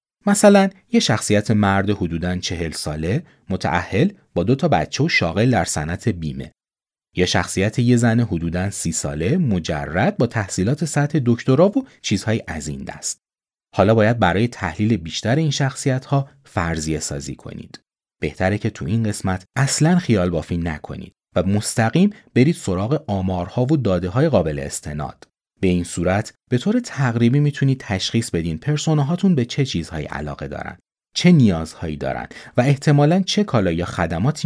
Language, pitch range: Persian, 85-130 Hz